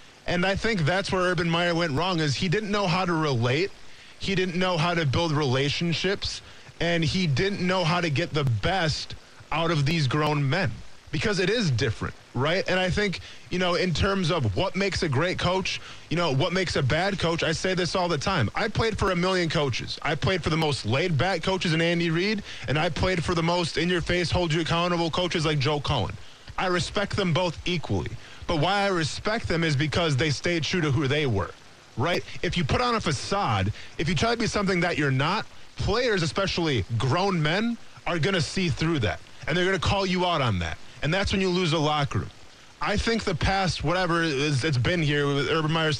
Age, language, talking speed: 20-39, English, 220 wpm